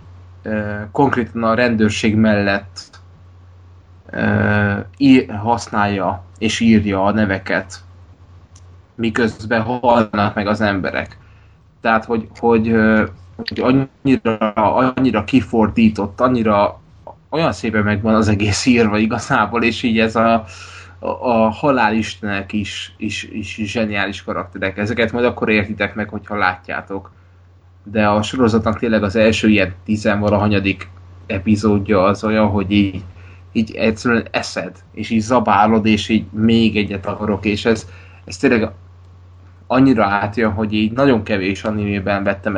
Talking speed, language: 120 wpm, Hungarian